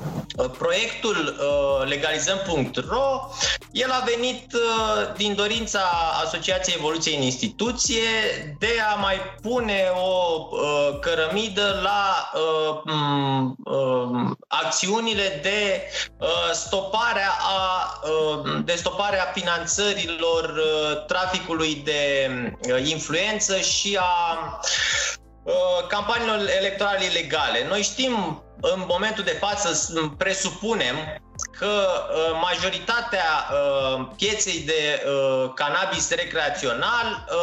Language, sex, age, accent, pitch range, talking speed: Romanian, male, 20-39, native, 155-210 Hz, 70 wpm